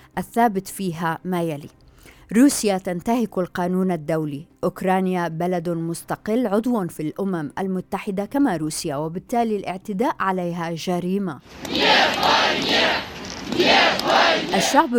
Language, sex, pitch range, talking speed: Arabic, female, 165-205 Hz, 90 wpm